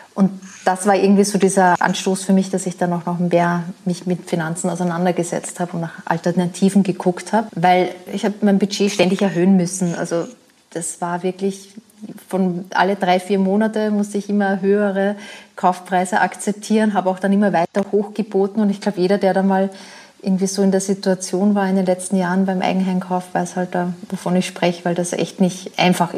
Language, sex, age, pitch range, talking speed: German, female, 30-49, 180-205 Hz, 190 wpm